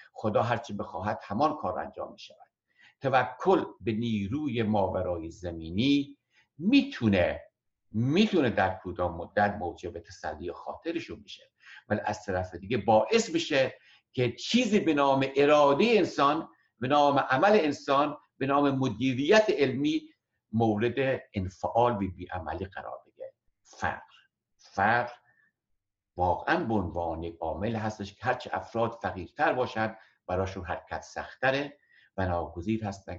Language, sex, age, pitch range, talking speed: Persian, male, 60-79, 90-135 Hz, 120 wpm